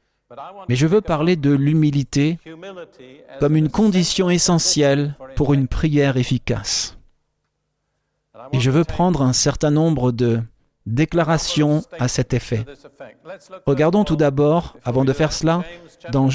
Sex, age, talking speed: male, 50-69, 125 wpm